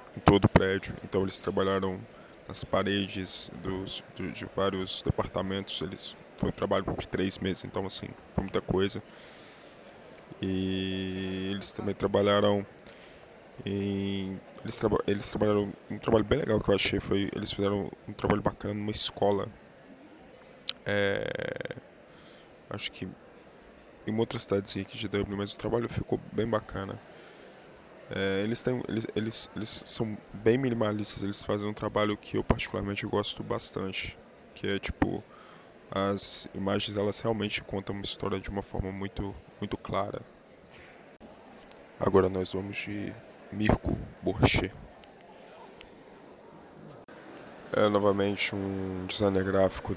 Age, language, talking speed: 20-39, Portuguese, 130 wpm